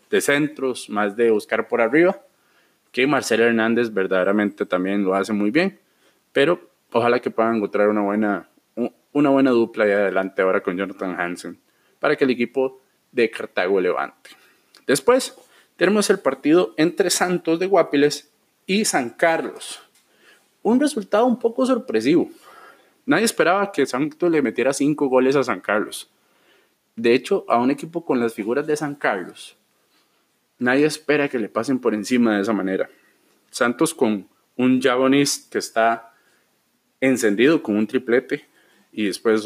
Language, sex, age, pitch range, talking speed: Spanish, male, 20-39, 115-180 Hz, 150 wpm